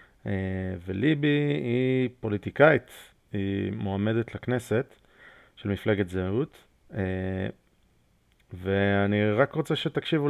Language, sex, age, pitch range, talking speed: Hebrew, male, 30-49, 100-130 Hz, 85 wpm